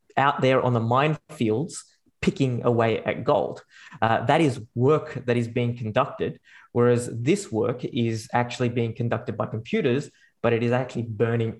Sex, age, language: male, 20-39, English